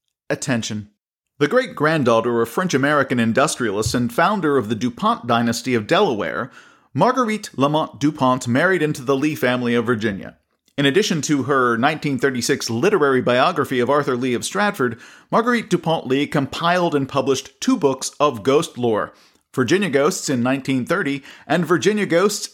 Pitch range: 135-180 Hz